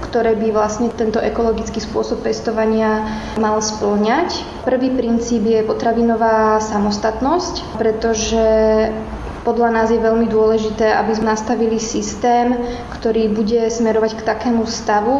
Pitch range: 220-235 Hz